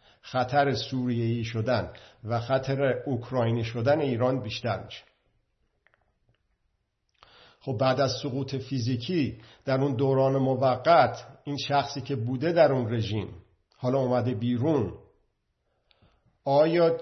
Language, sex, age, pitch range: Persian, male, 50-69, 115-140 Hz